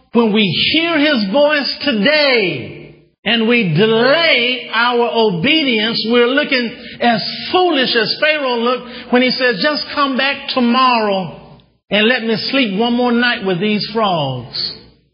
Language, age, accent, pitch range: English, 50-69, American, 150-230 Hz